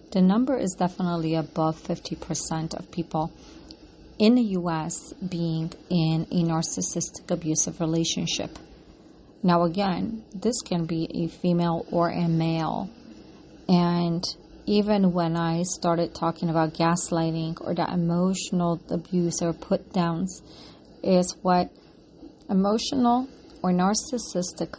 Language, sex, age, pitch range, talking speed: English, female, 30-49, 165-185 Hz, 115 wpm